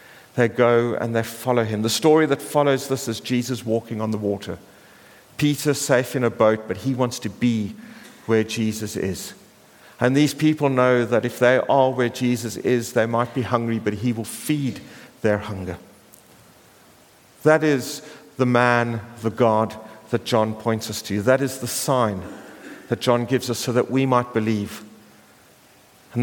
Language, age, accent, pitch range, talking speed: English, 50-69, British, 110-135 Hz, 175 wpm